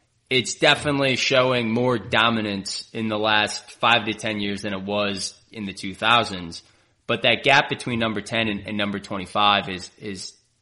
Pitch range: 105-120 Hz